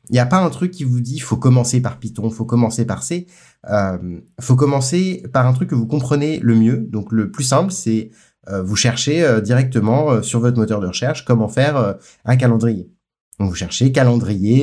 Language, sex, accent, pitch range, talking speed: French, male, French, 115-135 Hz, 235 wpm